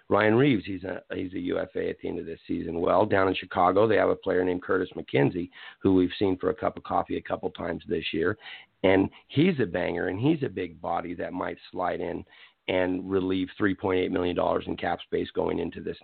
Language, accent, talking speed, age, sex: English, American, 225 wpm, 50-69, male